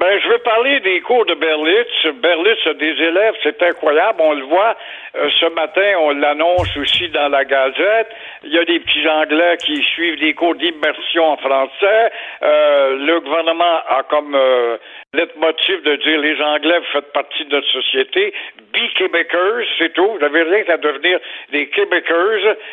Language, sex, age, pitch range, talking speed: French, male, 60-79, 150-210 Hz, 180 wpm